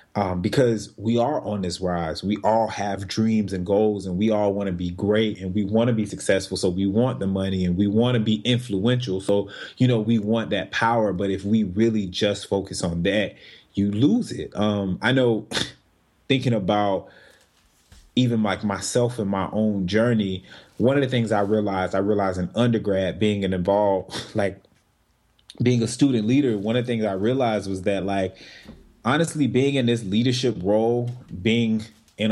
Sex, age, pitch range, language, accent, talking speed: male, 30-49, 100-115 Hz, English, American, 190 wpm